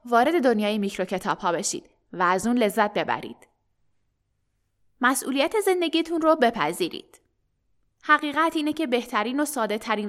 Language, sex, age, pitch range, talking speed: Persian, female, 10-29, 215-300 Hz, 130 wpm